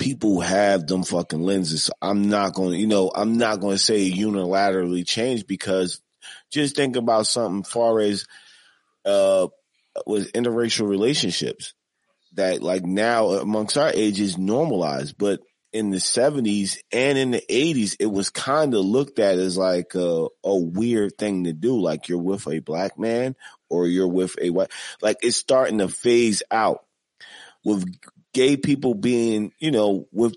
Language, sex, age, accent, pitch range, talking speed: English, male, 30-49, American, 95-120 Hz, 165 wpm